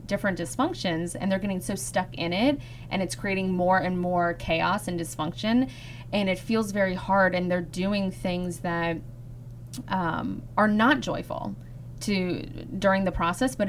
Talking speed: 160 wpm